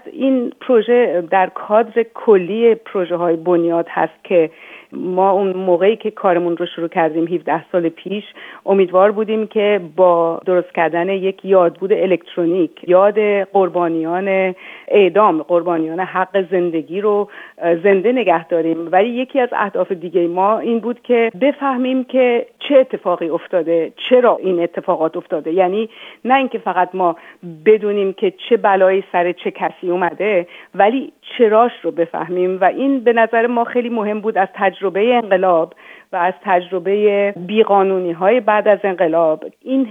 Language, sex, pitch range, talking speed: Persian, female, 180-225 Hz, 140 wpm